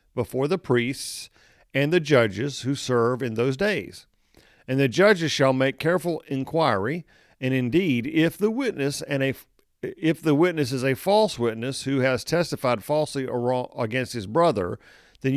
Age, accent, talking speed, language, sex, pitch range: 50-69, American, 155 wpm, English, male, 120-145 Hz